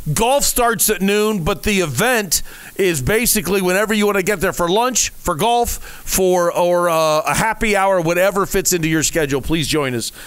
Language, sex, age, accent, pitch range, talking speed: English, male, 40-59, American, 160-235 Hz, 195 wpm